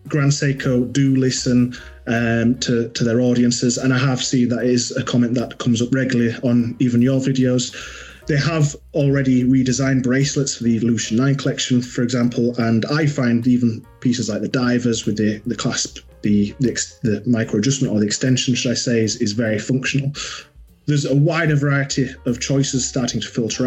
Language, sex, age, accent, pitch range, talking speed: English, male, 30-49, British, 120-140 Hz, 185 wpm